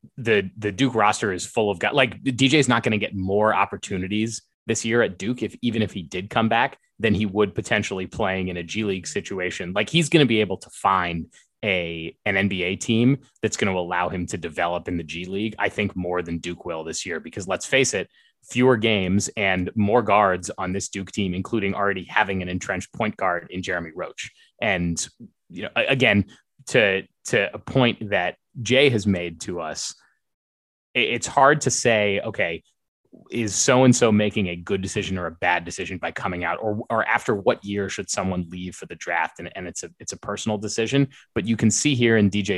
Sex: male